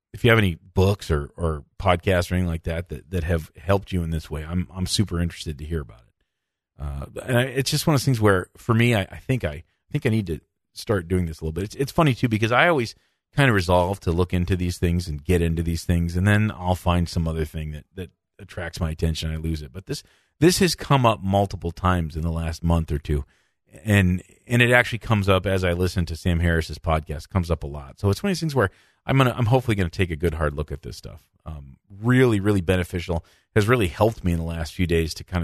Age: 40-59